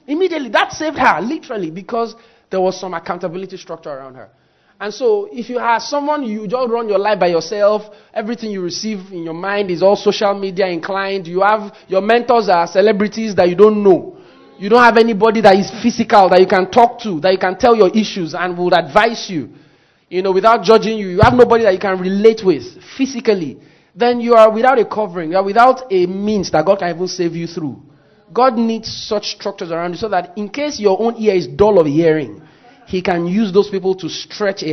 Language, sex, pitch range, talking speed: English, male, 160-220 Hz, 220 wpm